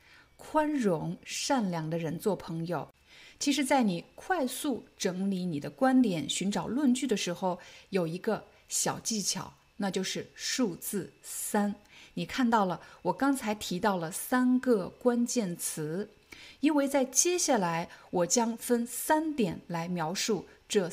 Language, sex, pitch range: Chinese, female, 170-240 Hz